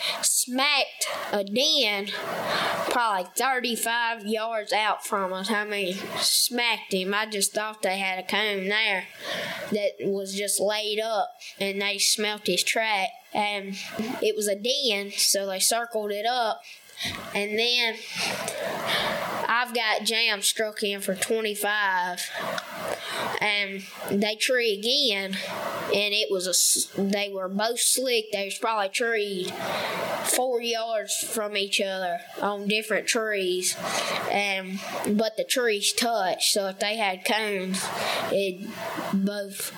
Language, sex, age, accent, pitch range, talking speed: English, female, 10-29, American, 200-235 Hz, 130 wpm